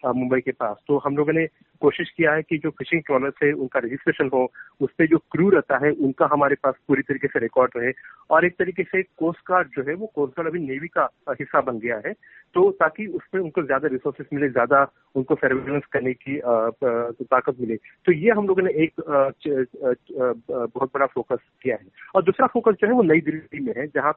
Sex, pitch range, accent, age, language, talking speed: male, 140-185 Hz, native, 30-49, Hindi, 215 wpm